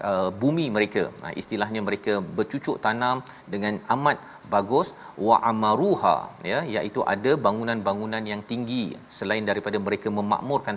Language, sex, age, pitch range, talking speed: Malayalam, male, 40-59, 100-135 Hz, 115 wpm